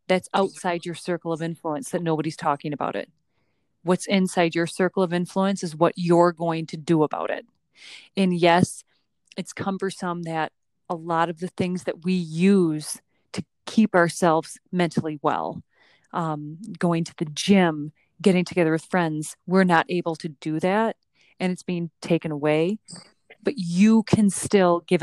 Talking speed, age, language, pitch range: 165 wpm, 30-49, English, 165-195 Hz